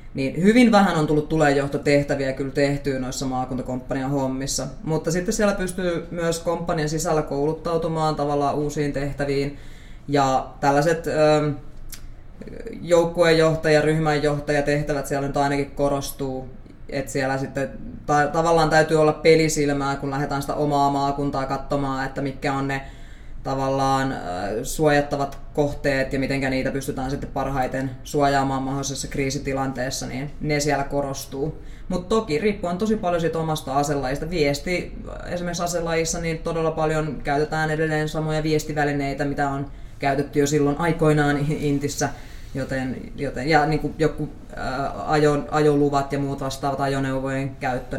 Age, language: 20-39, Finnish